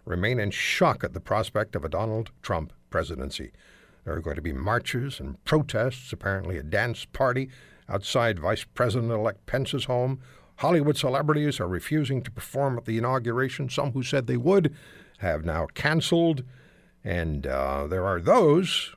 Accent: American